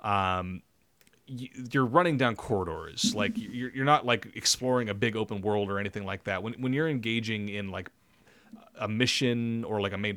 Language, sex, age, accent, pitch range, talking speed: English, male, 30-49, American, 100-130 Hz, 185 wpm